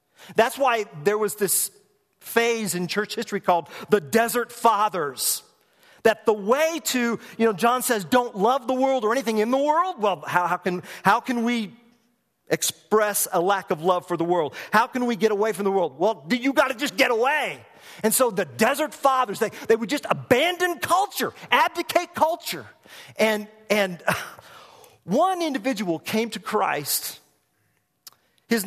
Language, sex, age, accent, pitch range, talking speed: English, male, 40-59, American, 175-235 Hz, 170 wpm